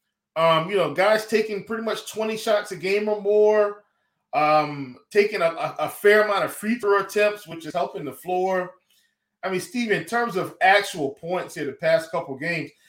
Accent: American